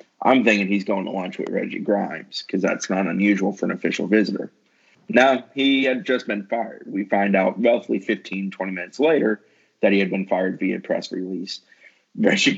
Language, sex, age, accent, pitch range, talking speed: English, male, 20-39, American, 95-110 Hz, 190 wpm